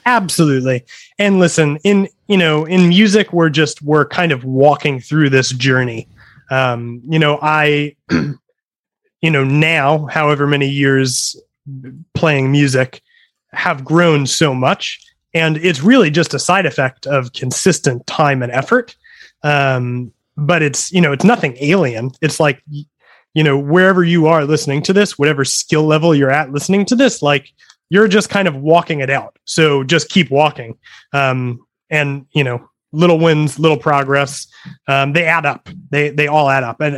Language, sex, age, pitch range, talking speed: English, male, 30-49, 135-175 Hz, 165 wpm